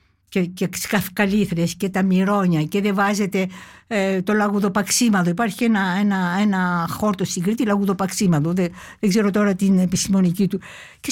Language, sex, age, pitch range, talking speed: Greek, female, 60-79, 195-275 Hz, 145 wpm